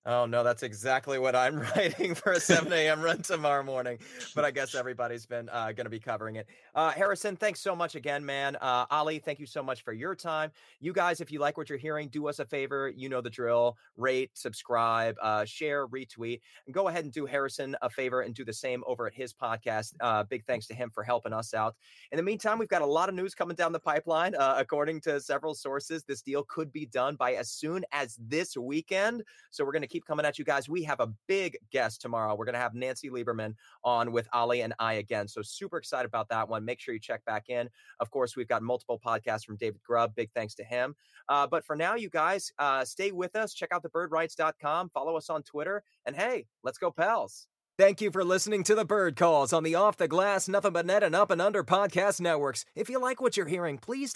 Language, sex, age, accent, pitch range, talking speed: English, male, 30-49, American, 125-185 Hz, 240 wpm